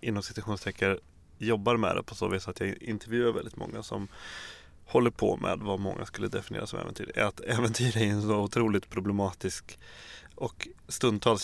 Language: English